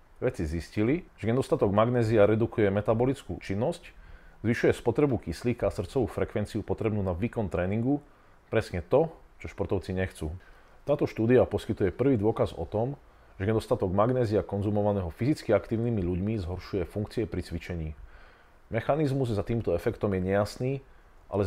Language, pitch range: Slovak, 100-120 Hz